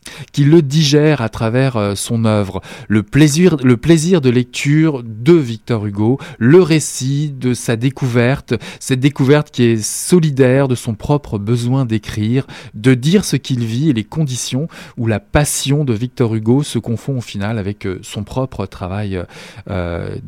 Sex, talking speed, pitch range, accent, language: male, 160 wpm, 110-140 Hz, French, French